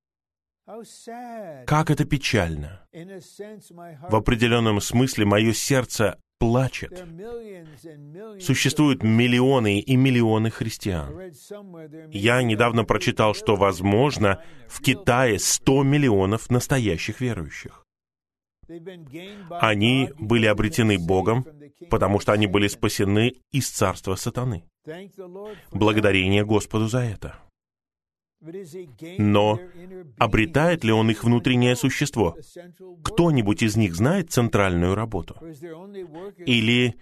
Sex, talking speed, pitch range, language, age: male, 90 wpm, 105-160 Hz, Russian, 20-39